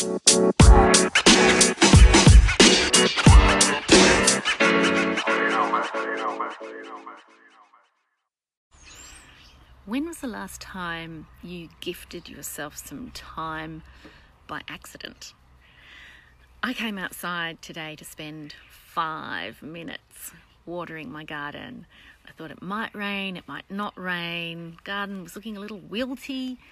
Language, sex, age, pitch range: English, female, 30-49, 165-210 Hz